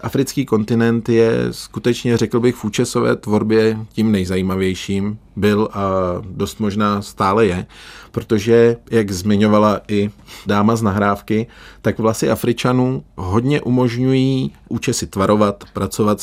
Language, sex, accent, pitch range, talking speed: Czech, male, native, 100-115 Hz, 120 wpm